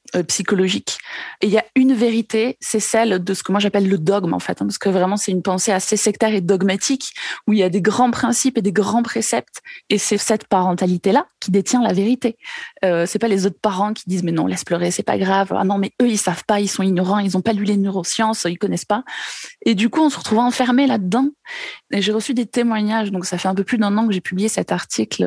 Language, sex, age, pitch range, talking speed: French, female, 20-39, 185-220 Hz, 260 wpm